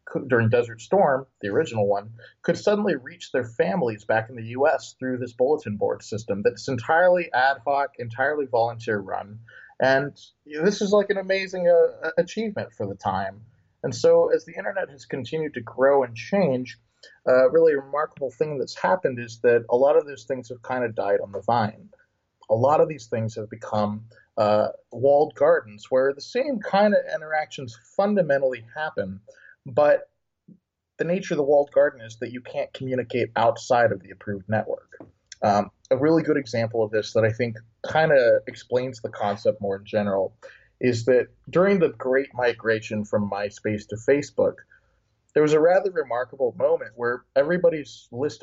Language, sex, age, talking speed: English, male, 30-49, 175 wpm